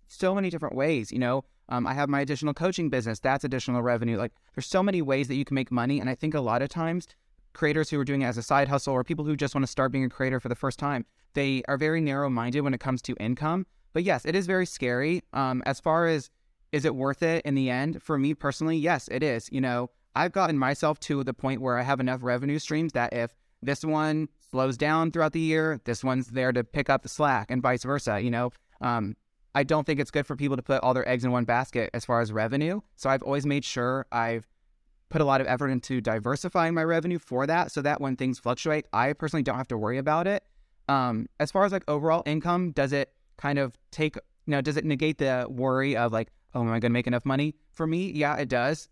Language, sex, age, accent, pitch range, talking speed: English, male, 20-39, American, 125-150 Hz, 255 wpm